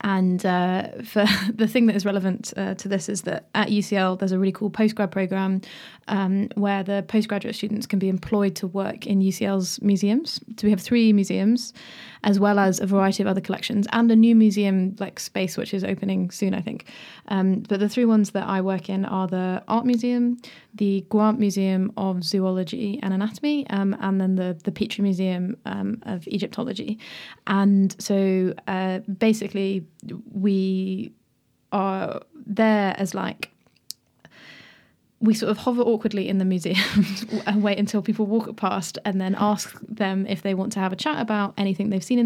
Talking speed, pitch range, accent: 180 wpm, 190-215 Hz, British